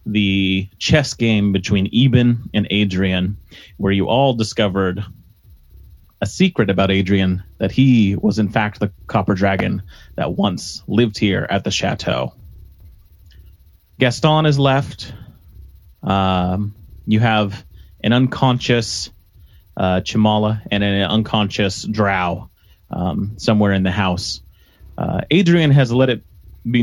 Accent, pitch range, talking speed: American, 90-115 Hz, 125 wpm